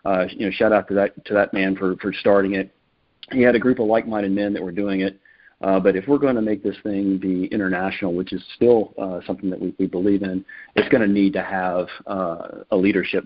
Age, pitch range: 40-59, 95-110 Hz